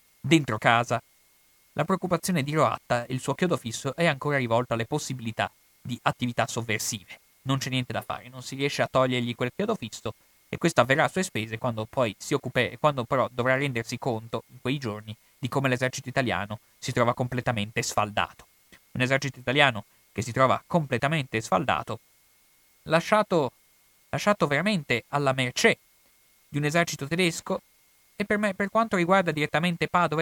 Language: Italian